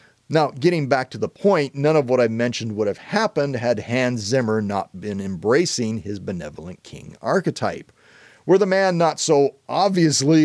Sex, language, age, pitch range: male, English, 40-59, 115-155 Hz